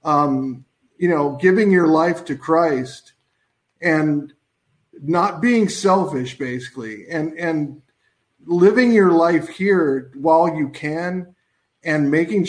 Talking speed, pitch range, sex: 115 wpm, 145-195 Hz, male